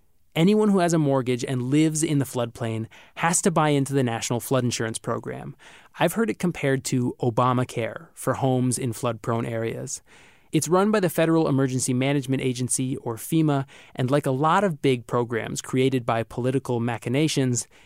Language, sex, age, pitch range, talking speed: English, male, 20-39, 125-155 Hz, 170 wpm